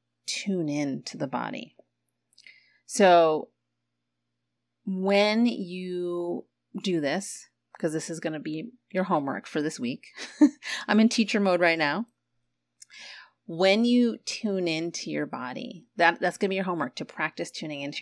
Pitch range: 160-210 Hz